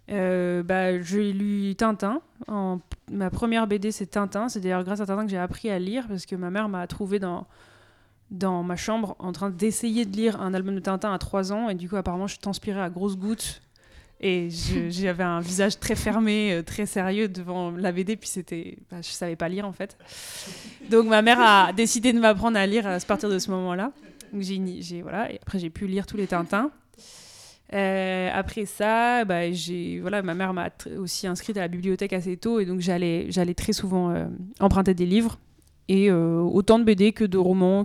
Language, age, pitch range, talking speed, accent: French, 20-39, 180-215 Hz, 210 wpm, French